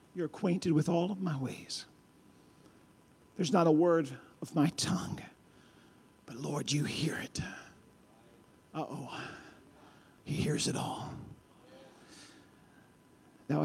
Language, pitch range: English, 145-170 Hz